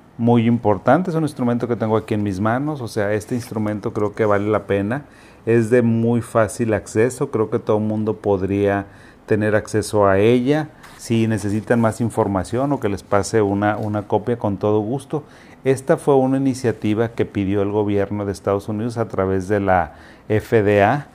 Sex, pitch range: male, 105-120 Hz